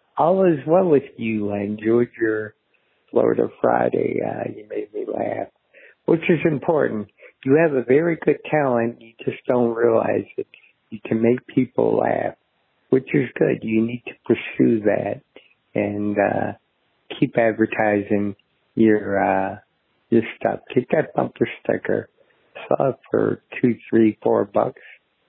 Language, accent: English, American